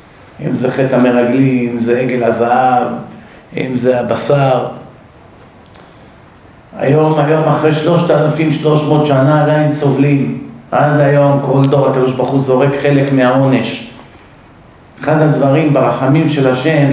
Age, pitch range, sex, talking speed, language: 50-69, 125-165 Hz, male, 115 wpm, Hebrew